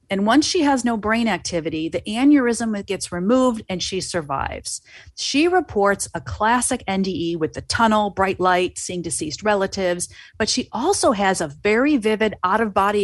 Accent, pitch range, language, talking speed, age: American, 180-230 Hz, English, 160 wpm, 40-59